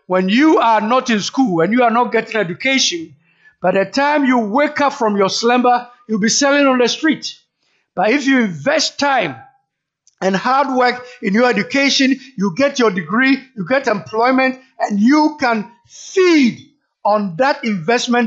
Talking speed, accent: 170 wpm, South African